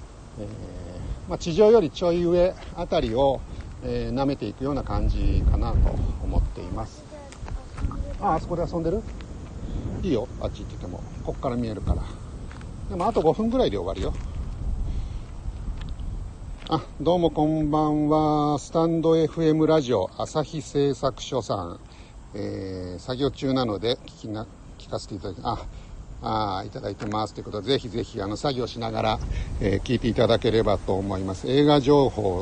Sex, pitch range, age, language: male, 95-145 Hz, 60-79, Japanese